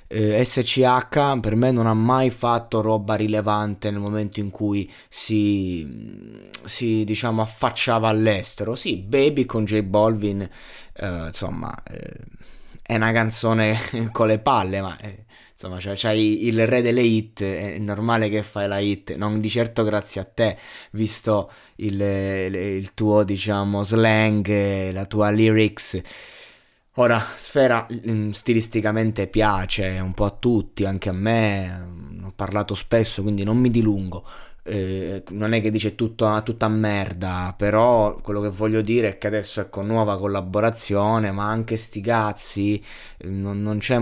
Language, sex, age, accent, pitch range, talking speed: Italian, male, 20-39, native, 100-115 Hz, 150 wpm